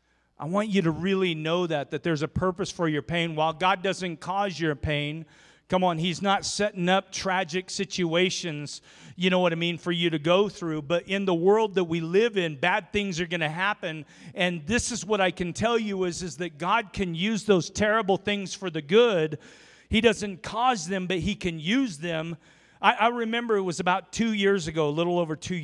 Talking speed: 220 wpm